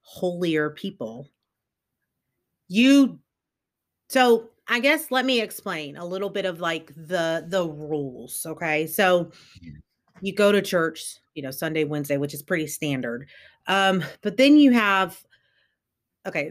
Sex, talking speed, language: female, 135 wpm, English